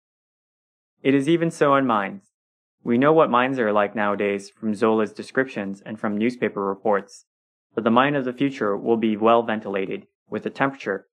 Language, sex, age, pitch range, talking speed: English, male, 20-39, 100-120 Hz, 180 wpm